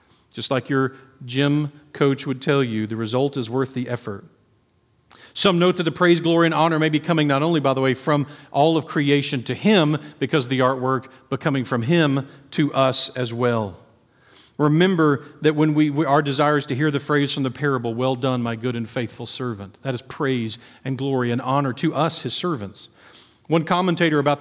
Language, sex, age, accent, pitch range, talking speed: English, male, 40-59, American, 130-165 Hz, 205 wpm